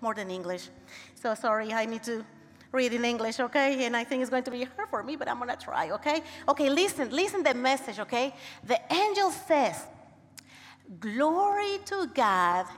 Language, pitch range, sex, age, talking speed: English, 215-320 Hz, female, 30-49, 195 wpm